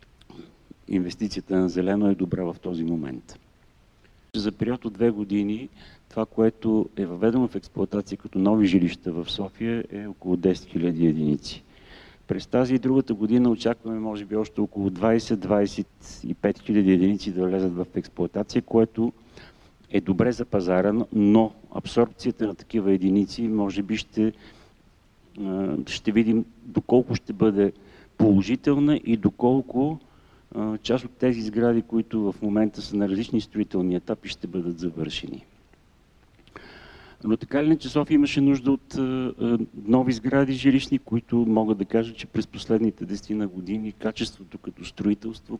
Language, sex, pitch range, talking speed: Bulgarian, male, 95-115 Hz, 135 wpm